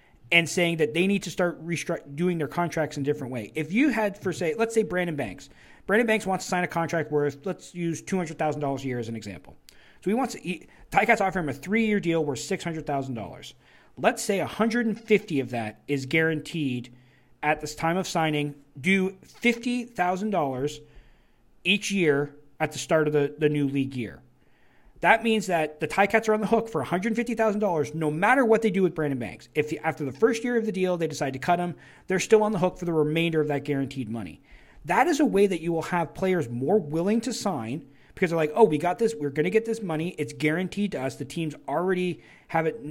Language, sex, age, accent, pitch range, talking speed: English, male, 40-59, American, 150-200 Hz, 220 wpm